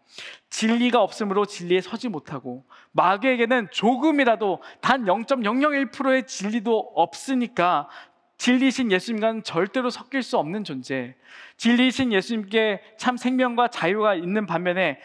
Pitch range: 180-245 Hz